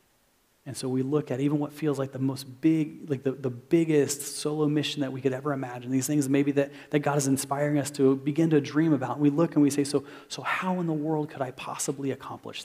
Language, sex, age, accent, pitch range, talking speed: English, male, 30-49, American, 130-150 Hz, 250 wpm